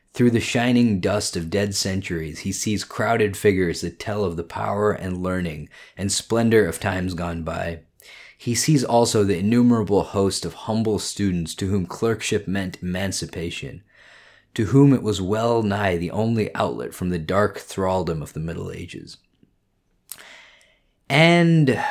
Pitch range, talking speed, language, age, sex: 90-120 Hz, 155 wpm, English, 20-39, male